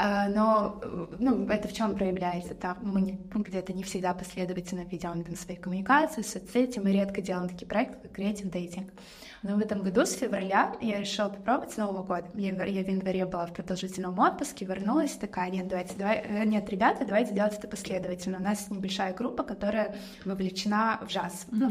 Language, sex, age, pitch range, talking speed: Russian, female, 20-39, 195-230 Hz, 170 wpm